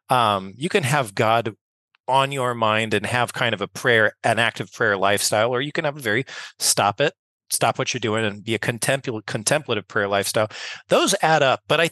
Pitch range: 115-145 Hz